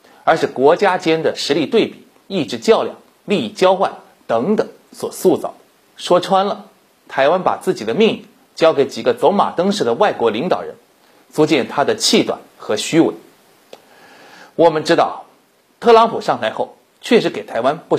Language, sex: Chinese, male